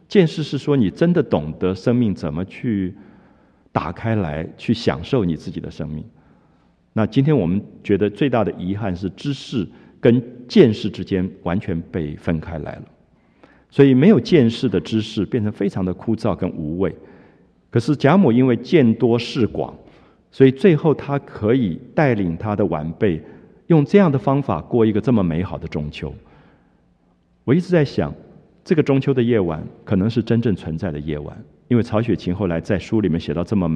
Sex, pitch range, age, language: male, 85-130 Hz, 50-69, Japanese